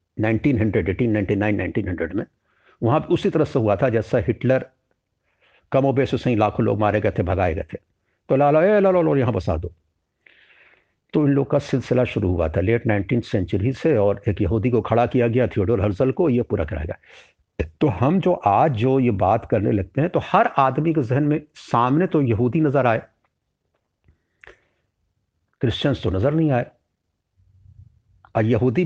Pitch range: 105-140 Hz